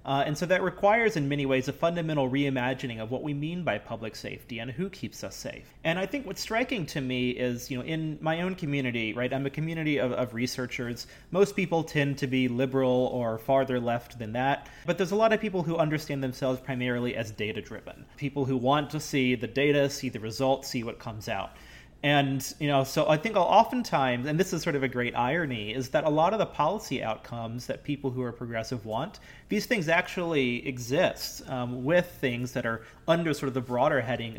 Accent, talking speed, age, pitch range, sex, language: American, 220 wpm, 30-49, 120-150 Hz, male, English